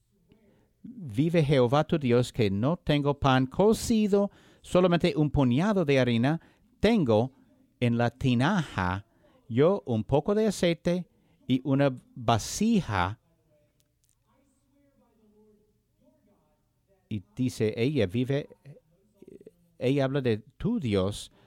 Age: 60-79